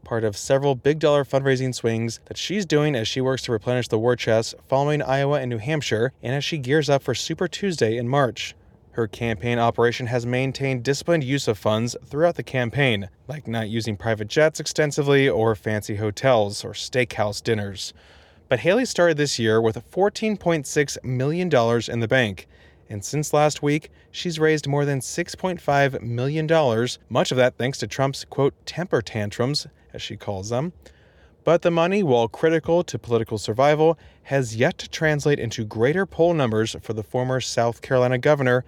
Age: 20-39